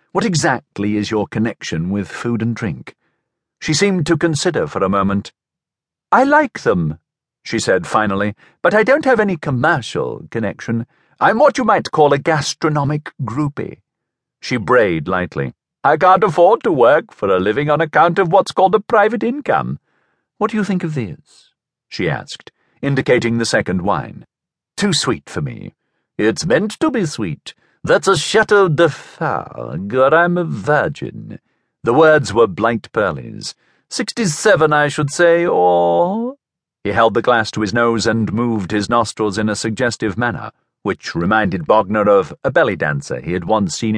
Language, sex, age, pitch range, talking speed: English, male, 50-69, 115-180 Hz, 170 wpm